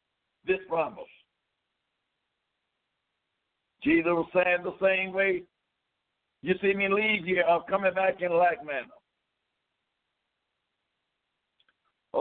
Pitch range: 180-220 Hz